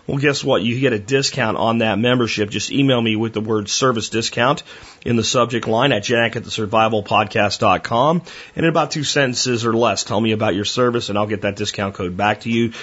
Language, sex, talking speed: English, male, 215 wpm